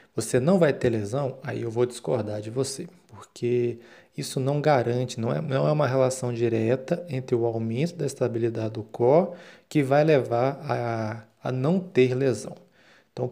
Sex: male